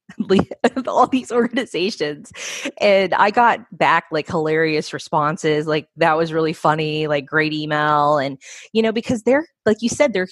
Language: English